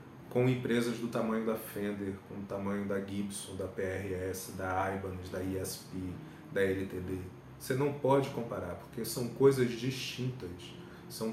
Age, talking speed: 40-59, 150 wpm